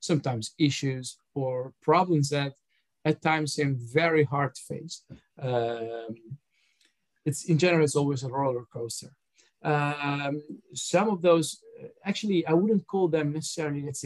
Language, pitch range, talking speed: English, 130-155 Hz, 135 wpm